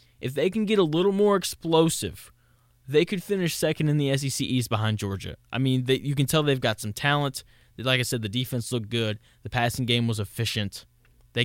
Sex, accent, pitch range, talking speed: male, American, 115-145 Hz, 210 wpm